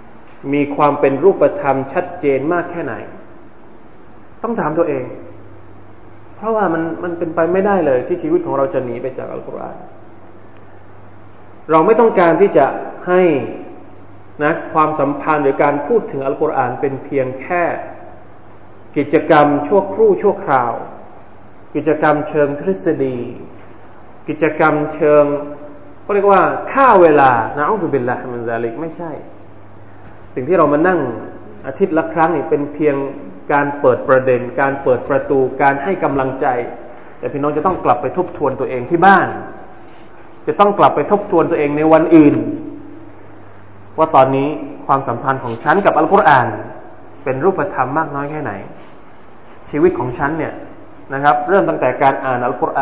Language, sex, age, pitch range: Thai, male, 20-39, 125-165 Hz